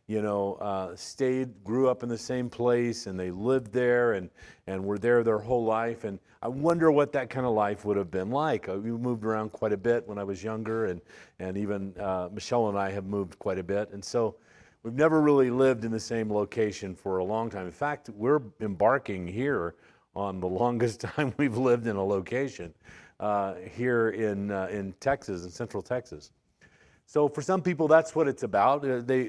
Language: English